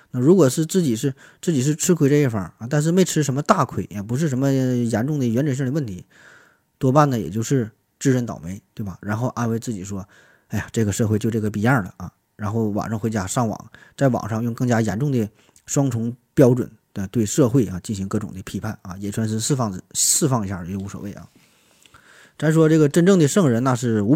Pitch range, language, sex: 105-140 Hz, Chinese, male